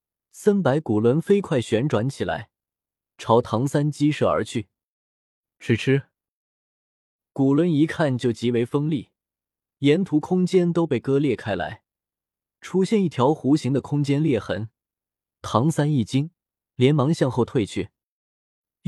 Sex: male